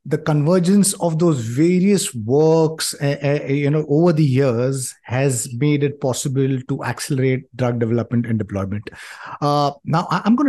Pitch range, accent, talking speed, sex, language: 120-155 Hz, Indian, 155 wpm, male, English